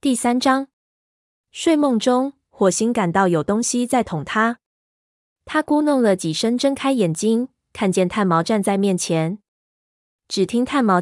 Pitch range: 175-230 Hz